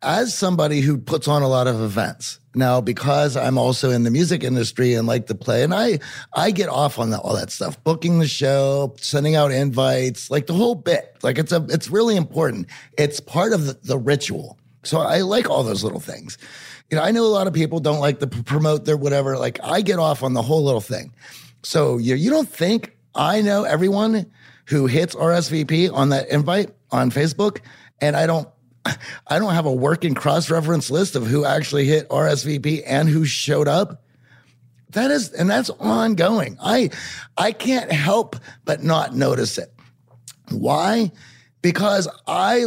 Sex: male